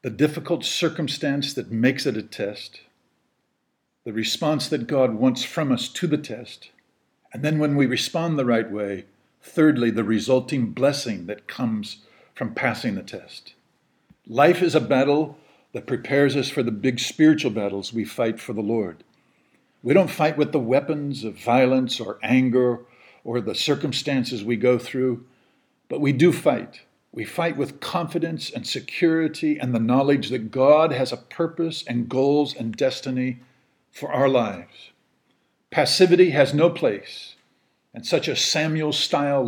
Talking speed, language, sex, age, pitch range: 155 wpm, English, male, 50-69, 120-150 Hz